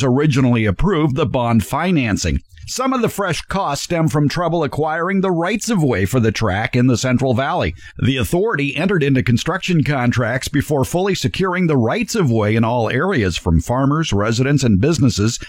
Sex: male